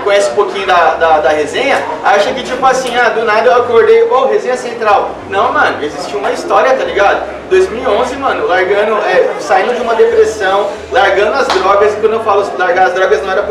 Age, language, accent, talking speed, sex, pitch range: 20-39, Portuguese, Brazilian, 215 wpm, male, 205-305 Hz